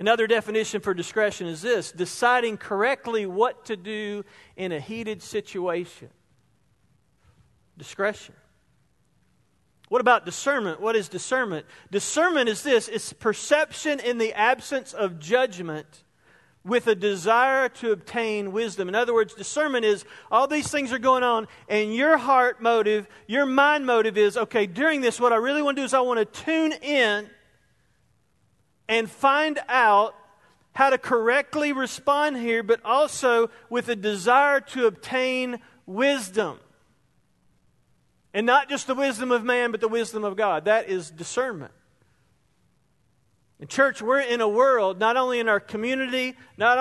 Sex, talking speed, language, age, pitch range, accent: male, 145 wpm, English, 40-59, 210-260 Hz, American